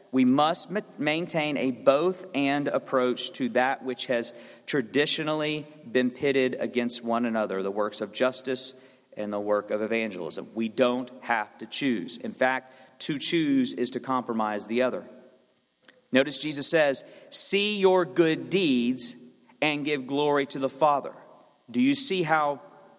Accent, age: American, 40-59